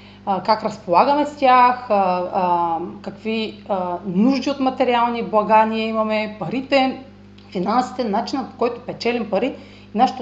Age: 30-49